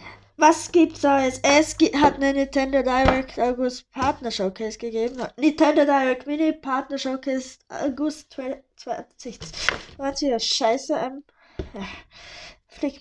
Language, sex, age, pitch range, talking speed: German, female, 20-39, 225-290 Hz, 120 wpm